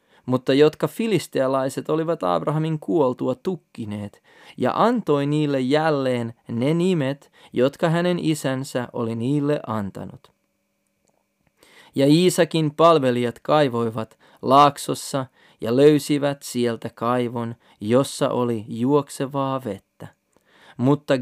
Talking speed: 95 wpm